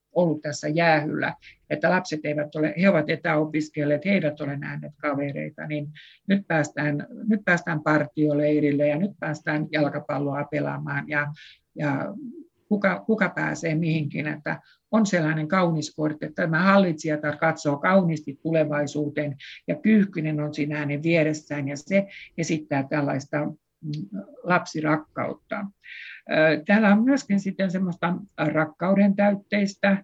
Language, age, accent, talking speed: Finnish, 60-79, native, 120 wpm